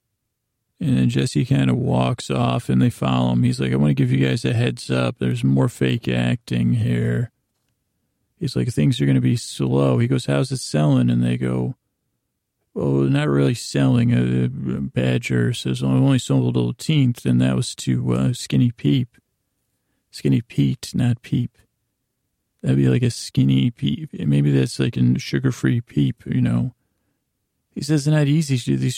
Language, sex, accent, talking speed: English, male, American, 180 wpm